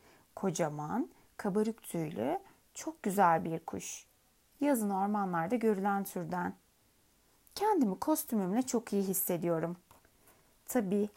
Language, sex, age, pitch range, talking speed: Turkish, female, 30-49, 180-240 Hz, 90 wpm